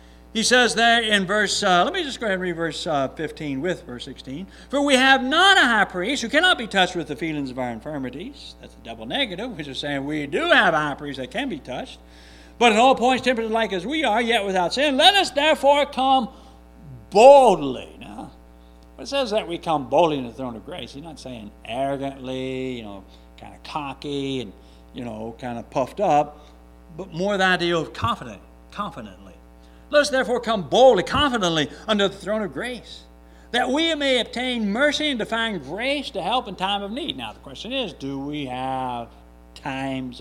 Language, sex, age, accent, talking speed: English, male, 60-79, American, 205 wpm